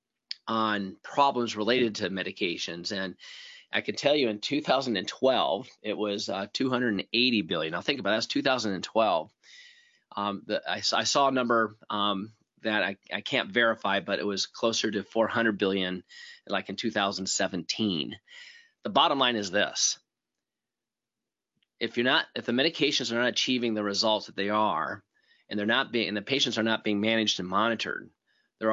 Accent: American